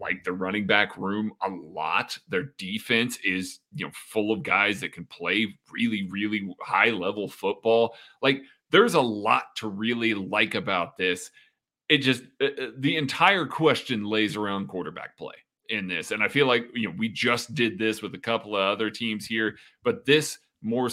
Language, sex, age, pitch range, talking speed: English, male, 30-49, 105-130 Hz, 180 wpm